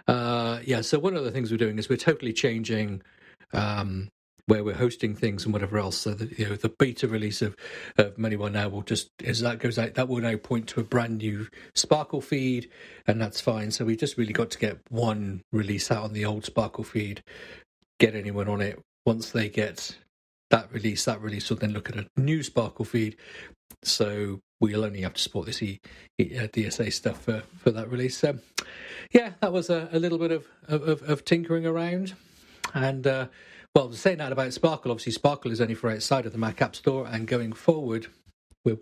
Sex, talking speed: male, 210 wpm